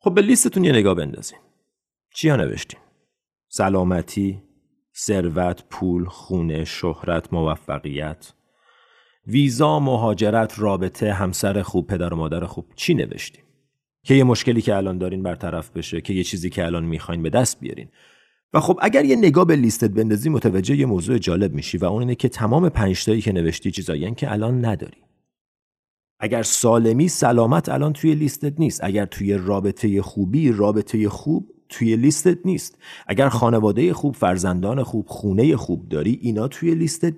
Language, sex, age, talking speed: Persian, male, 40-59, 150 wpm